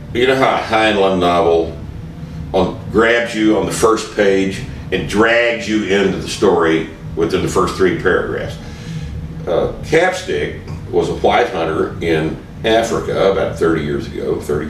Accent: American